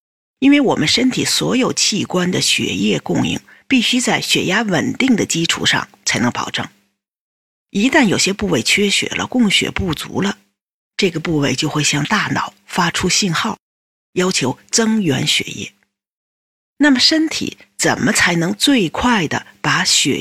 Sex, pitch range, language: female, 155-260 Hz, Chinese